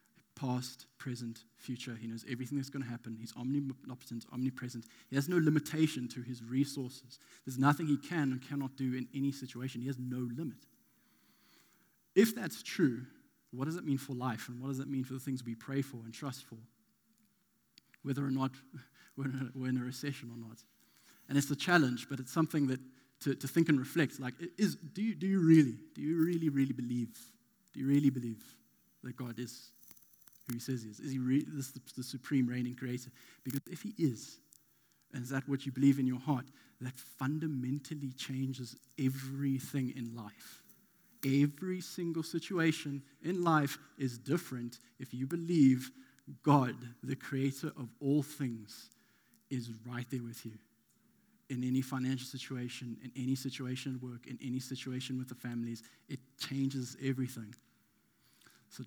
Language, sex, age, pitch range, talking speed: English, male, 20-39, 125-140 Hz, 170 wpm